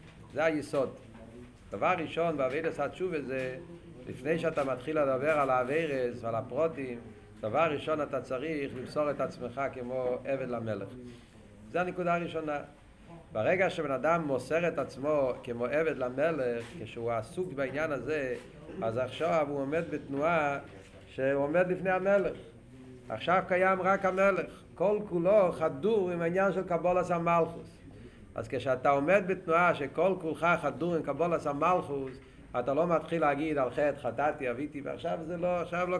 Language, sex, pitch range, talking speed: Hebrew, male, 135-180 Hz, 140 wpm